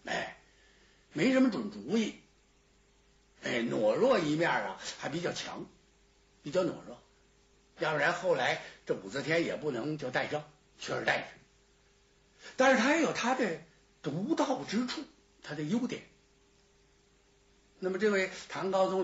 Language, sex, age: Chinese, male, 60-79